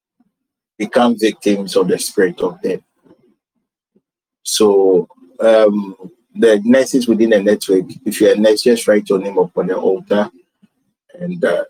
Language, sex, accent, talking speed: English, male, Nigerian, 140 wpm